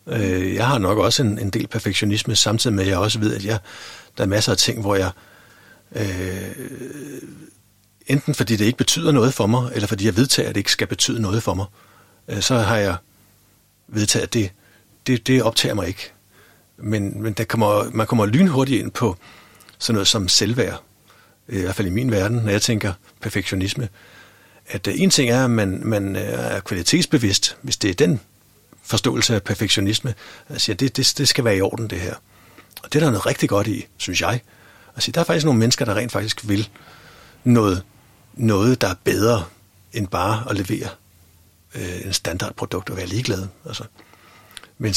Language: Danish